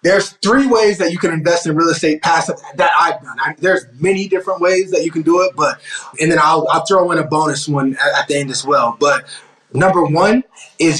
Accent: American